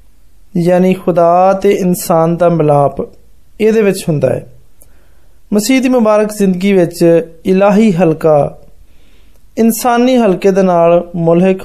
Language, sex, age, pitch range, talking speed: Hindi, male, 20-39, 160-205 Hz, 70 wpm